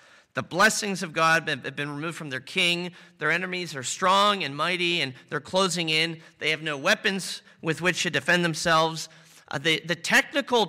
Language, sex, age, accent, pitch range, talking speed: English, male, 40-59, American, 145-200 Hz, 185 wpm